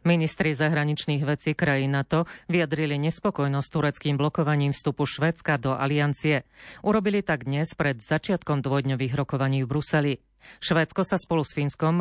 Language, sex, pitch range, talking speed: Slovak, female, 135-155 Hz, 135 wpm